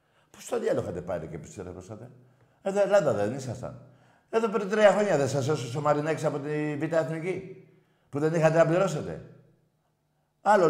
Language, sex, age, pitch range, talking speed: Greek, male, 60-79, 120-155 Hz, 155 wpm